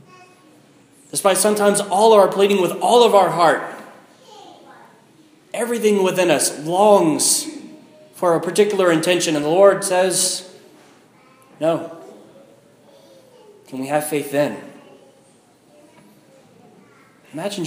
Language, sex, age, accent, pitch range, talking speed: English, male, 30-49, American, 160-220 Hz, 100 wpm